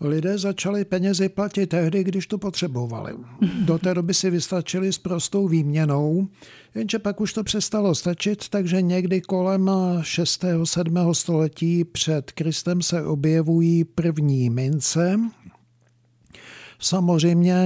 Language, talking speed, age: Czech, 120 wpm, 60-79